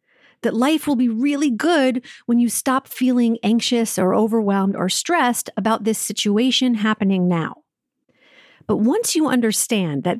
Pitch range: 215-275 Hz